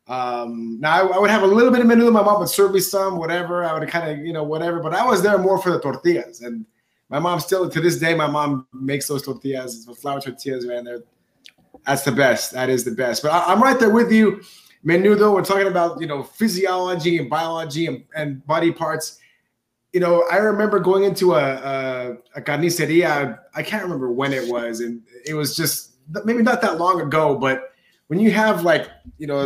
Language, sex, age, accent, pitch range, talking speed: English, male, 20-39, American, 140-195 Hz, 225 wpm